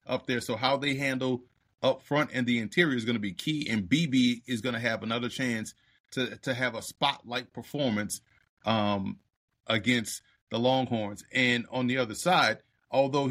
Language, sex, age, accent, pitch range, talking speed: English, male, 30-49, American, 120-140 Hz, 180 wpm